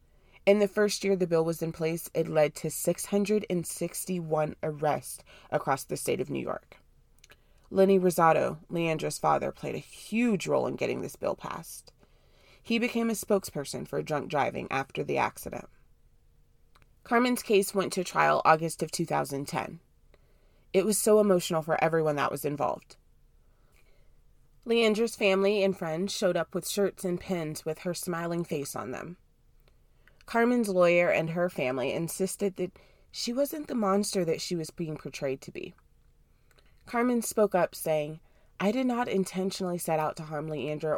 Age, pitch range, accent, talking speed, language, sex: 20-39, 150-195 Hz, American, 155 wpm, English, female